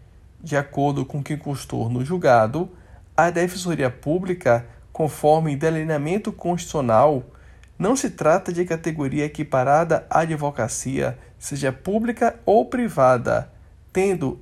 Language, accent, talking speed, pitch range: Portuguese, Brazilian, 110 wpm, 125-175 Hz